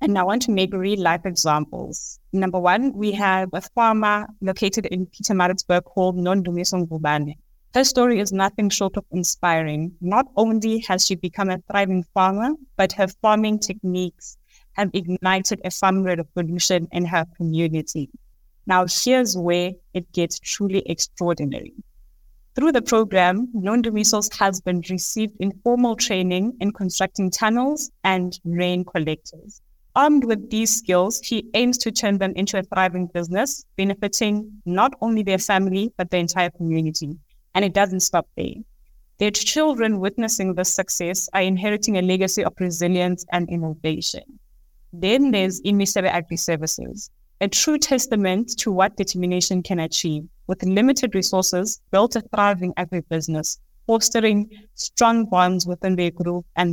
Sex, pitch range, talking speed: female, 180-215 Hz, 145 wpm